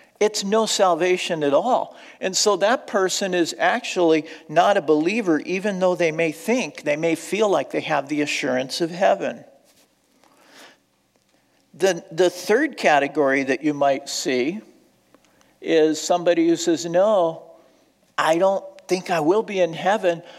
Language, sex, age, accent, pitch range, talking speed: English, male, 50-69, American, 160-230 Hz, 145 wpm